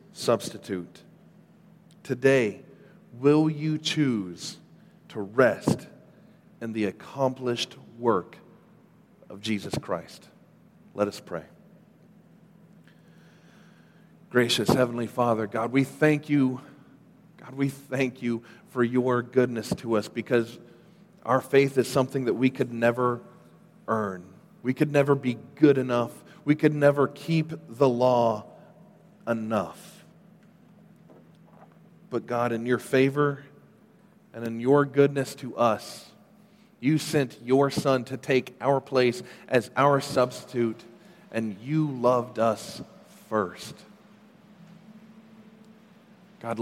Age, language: 40-59, English